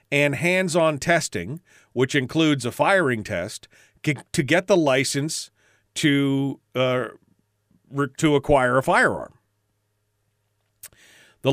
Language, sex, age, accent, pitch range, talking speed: English, male, 40-59, American, 115-160 Hz, 100 wpm